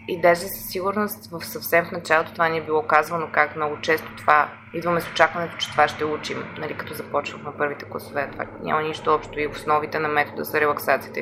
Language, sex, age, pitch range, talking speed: Bulgarian, female, 20-39, 150-185 Hz, 215 wpm